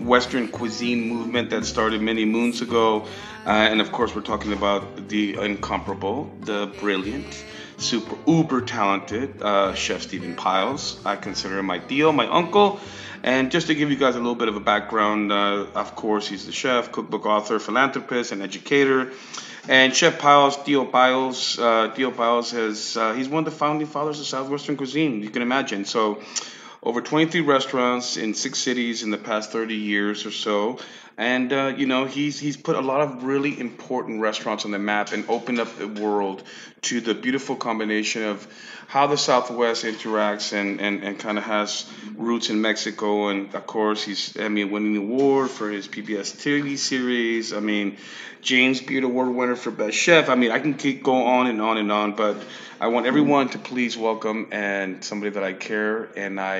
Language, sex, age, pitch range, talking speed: English, male, 30-49, 105-130 Hz, 185 wpm